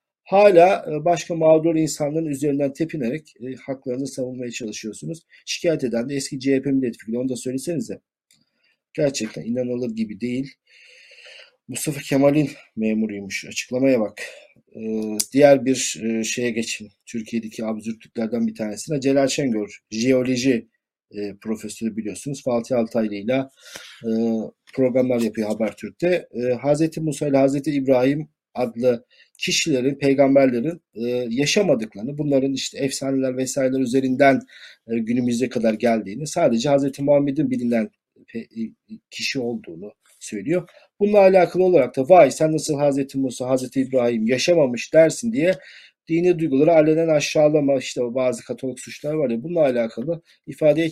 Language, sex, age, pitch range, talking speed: Turkish, male, 50-69, 120-155 Hz, 115 wpm